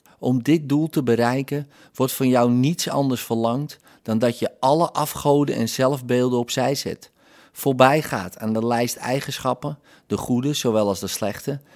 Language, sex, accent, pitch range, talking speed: Dutch, male, Dutch, 110-140 Hz, 160 wpm